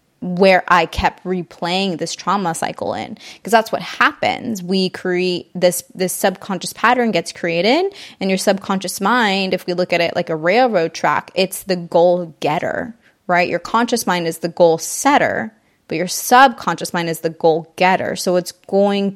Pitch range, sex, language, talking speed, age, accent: 175-210 Hz, female, English, 175 wpm, 20-39, American